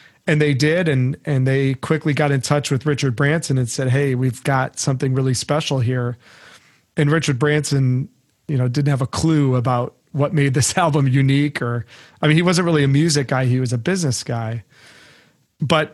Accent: American